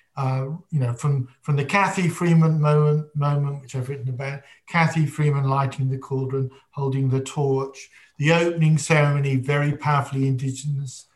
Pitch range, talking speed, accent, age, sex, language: 135-155 Hz, 150 wpm, British, 50-69, male, English